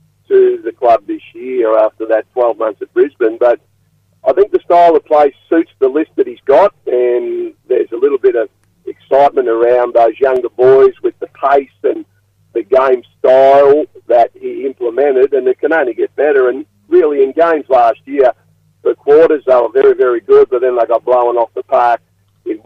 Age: 50-69